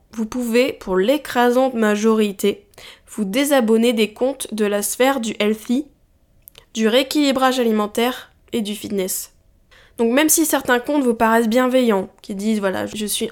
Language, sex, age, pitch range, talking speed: French, female, 10-29, 215-275 Hz, 150 wpm